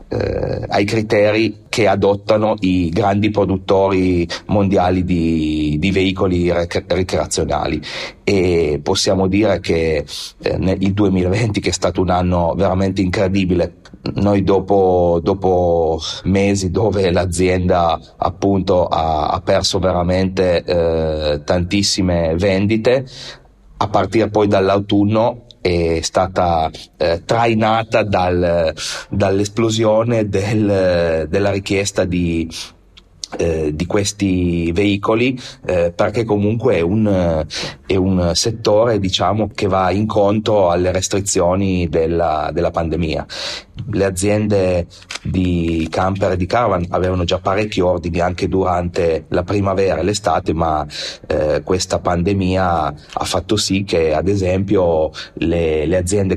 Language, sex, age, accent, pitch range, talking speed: Italian, male, 40-59, native, 85-100 Hz, 115 wpm